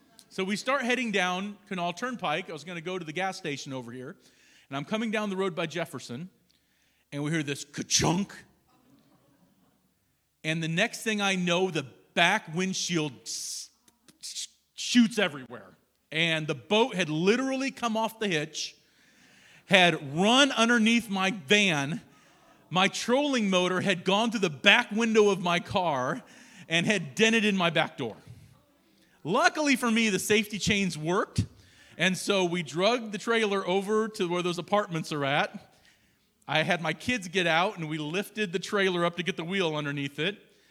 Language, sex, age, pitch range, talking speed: English, male, 40-59, 155-215 Hz, 170 wpm